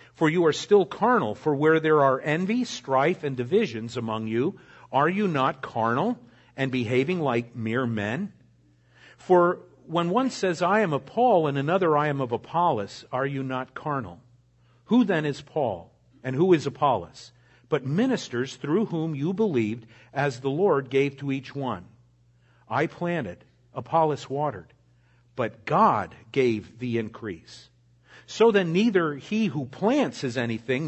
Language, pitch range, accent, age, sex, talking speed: English, 125-180 Hz, American, 50-69, male, 155 wpm